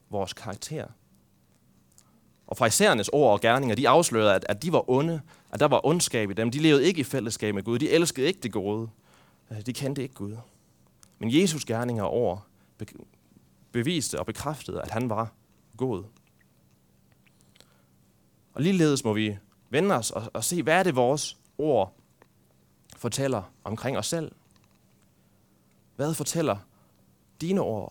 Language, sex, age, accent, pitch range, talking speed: Danish, male, 30-49, native, 95-125 Hz, 150 wpm